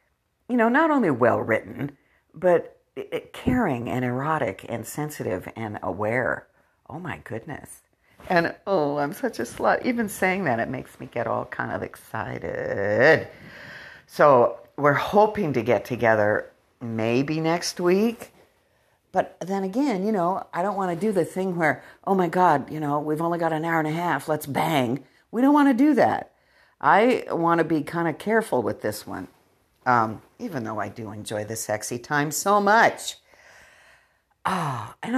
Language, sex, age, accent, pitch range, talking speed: English, female, 50-69, American, 115-190 Hz, 170 wpm